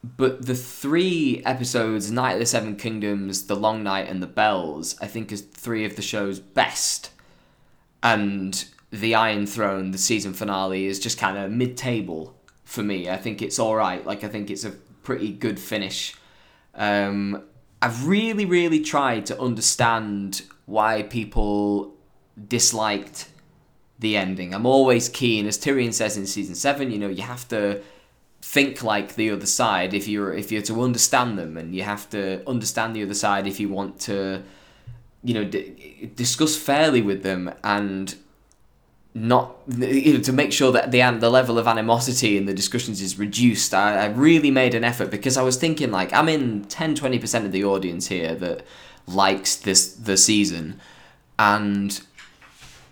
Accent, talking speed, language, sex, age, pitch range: British, 170 wpm, English, male, 10-29, 100-125 Hz